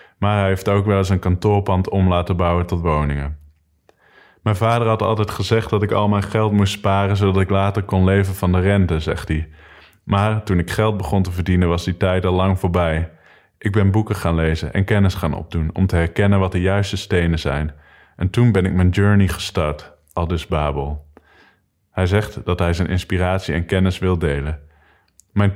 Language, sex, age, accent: English, male, 20-39, Dutch